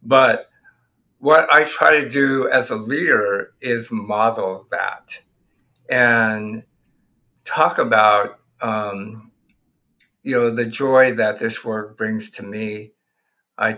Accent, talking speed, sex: American, 120 wpm, male